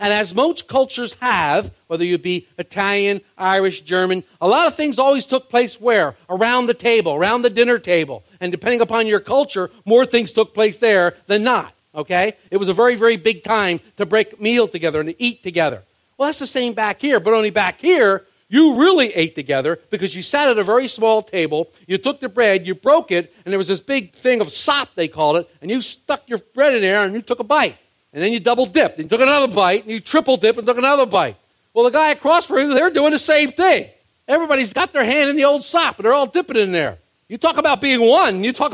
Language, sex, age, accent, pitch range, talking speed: English, male, 50-69, American, 190-275 Hz, 240 wpm